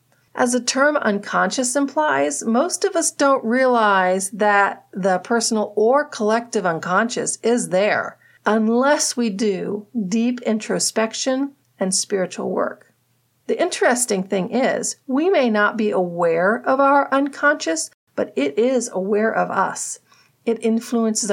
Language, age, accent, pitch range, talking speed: English, 40-59, American, 195-255 Hz, 130 wpm